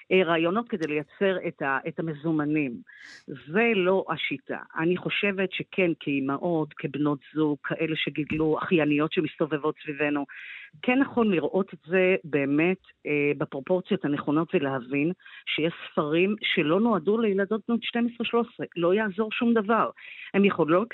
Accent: native